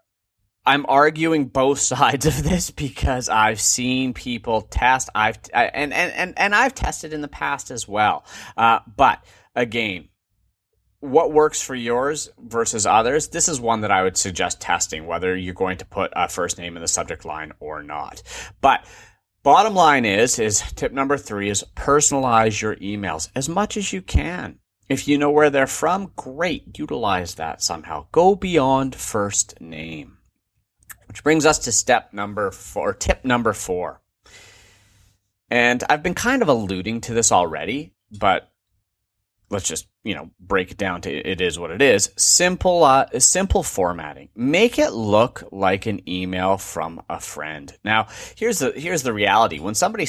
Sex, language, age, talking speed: male, English, 30-49, 170 wpm